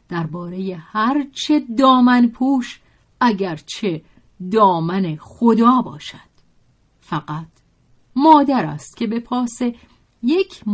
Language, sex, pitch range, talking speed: Persian, female, 165-240 Hz, 90 wpm